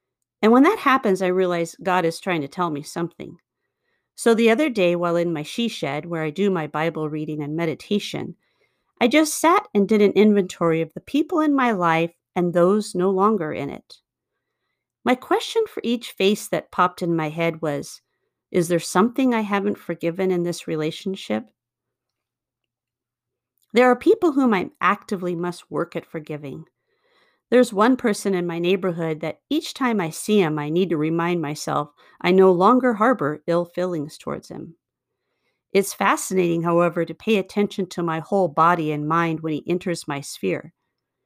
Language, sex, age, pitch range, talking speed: English, female, 40-59, 165-215 Hz, 175 wpm